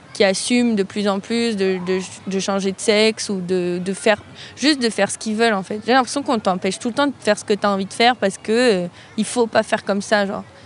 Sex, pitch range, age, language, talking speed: female, 195-230 Hz, 20-39, French, 280 wpm